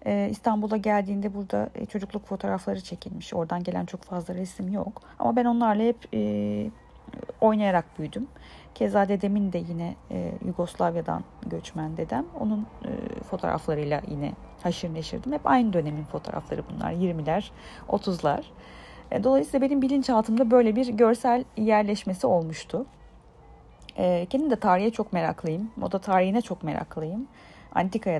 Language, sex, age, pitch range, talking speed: Turkish, female, 40-59, 170-230 Hz, 115 wpm